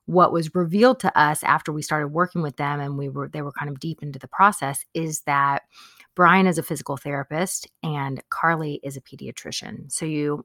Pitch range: 140-185 Hz